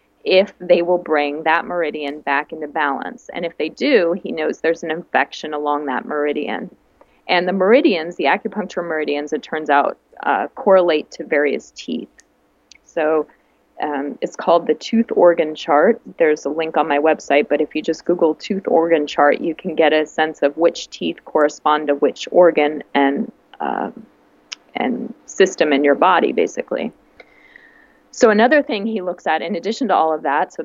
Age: 30-49